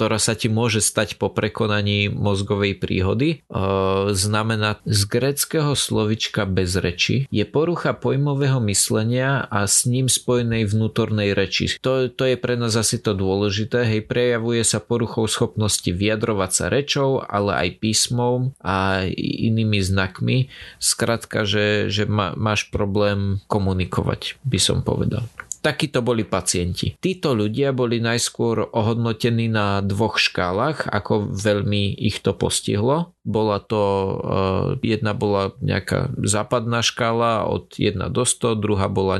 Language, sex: Slovak, male